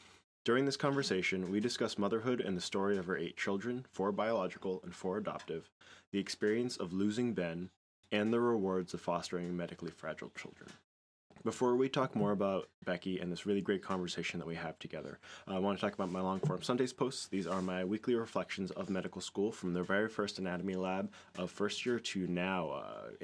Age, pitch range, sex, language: 20-39, 90-105 Hz, male, English